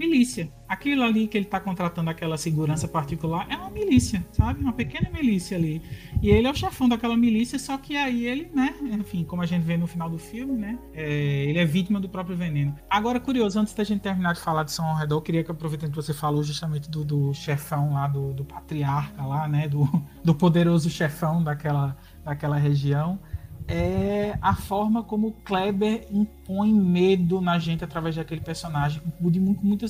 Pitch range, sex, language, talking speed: 155-195 Hz, male, Portuguese, 190 wpm